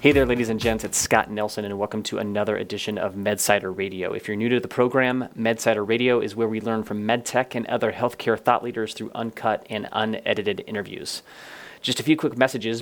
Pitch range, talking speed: 110-130 Hz, 210 wpm